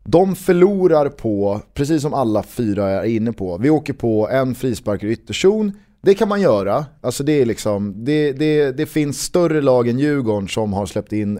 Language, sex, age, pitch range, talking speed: Swedish, male, 30-49, 110-145 Hz, 195 wpm